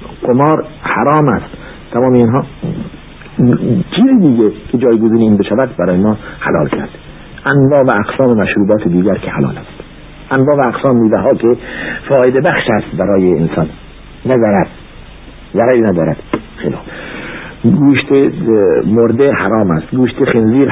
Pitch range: 105-130 Hz